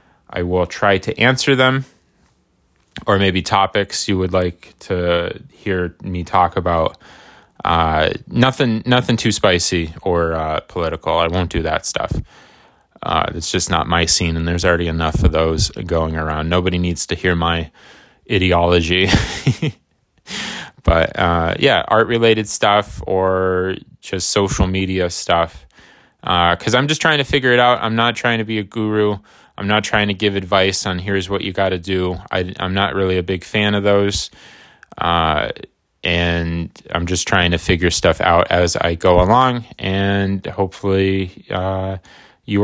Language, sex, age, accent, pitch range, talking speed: English, male, 20-39, American, 85-105 Hz, 160 wpm